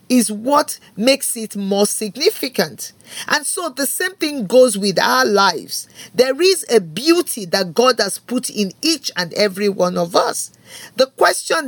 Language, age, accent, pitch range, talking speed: English, 40-59, Nigerian, 190-275 Hz, 165 wpm